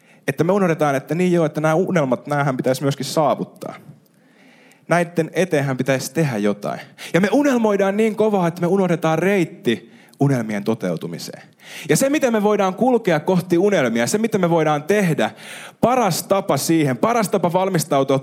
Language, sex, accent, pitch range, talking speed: Finnish, male, native, 140-200 Hz, 160 wpm